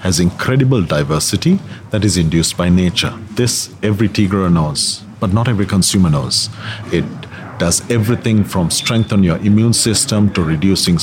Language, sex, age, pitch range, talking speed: English, male, 40-59, 95-120 Hz, 150 wpm